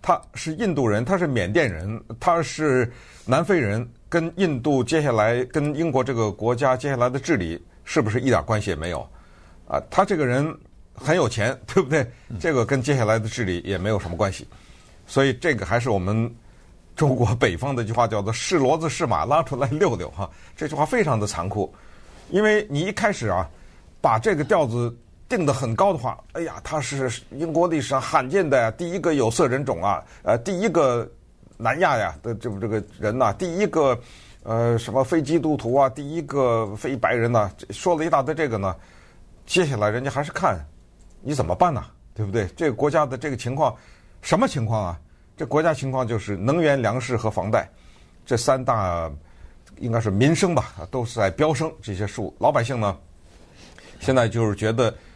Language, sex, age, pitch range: Chinese, male, 50-69, 105-150 Hz